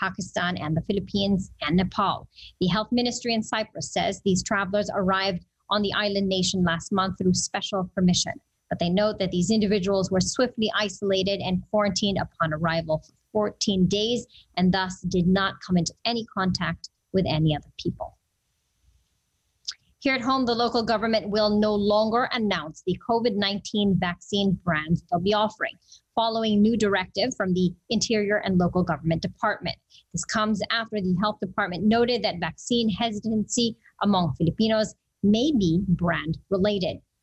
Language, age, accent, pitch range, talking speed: English, 30-49, American, 180-215 Hz, 150 wpm